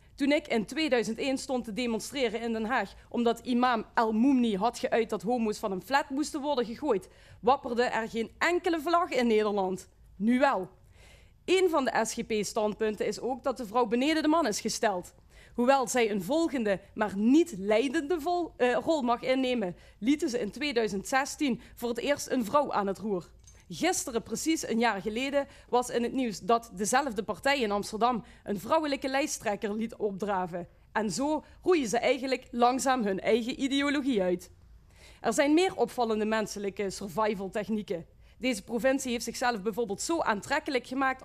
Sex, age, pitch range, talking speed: female, 30-49, 215-270 Hz, 165 wpm